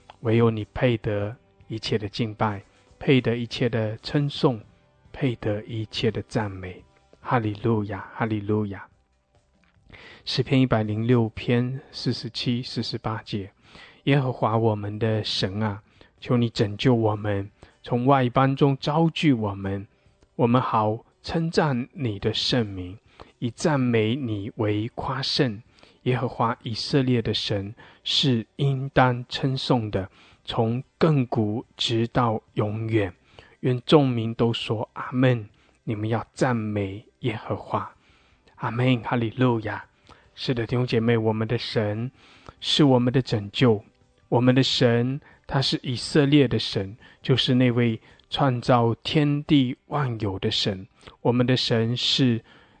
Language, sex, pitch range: English, male, 105-130 Hz